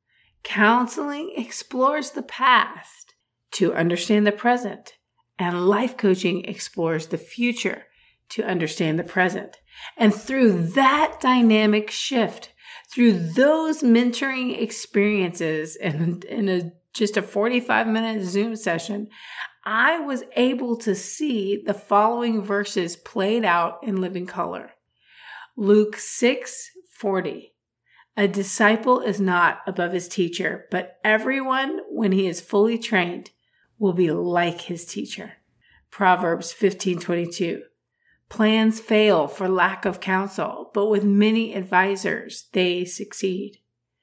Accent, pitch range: American, 180-230 Hz